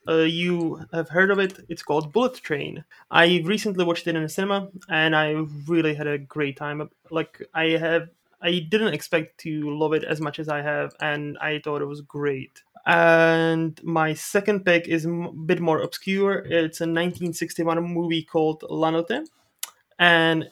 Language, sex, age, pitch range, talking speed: English, male, 20-39, 155-170 Hz, 180 wpm